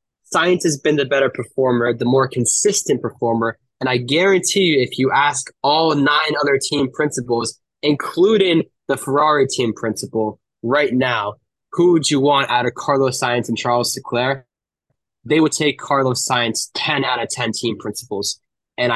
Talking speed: 165 wpm